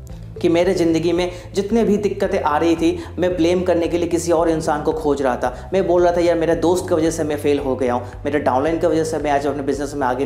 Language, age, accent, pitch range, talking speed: Hindi, 30-49, native, 150-180 Hz, 280 wpm